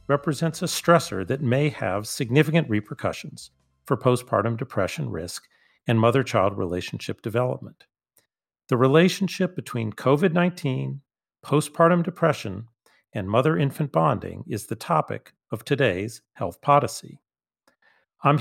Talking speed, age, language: 110 wpm, 40-59, English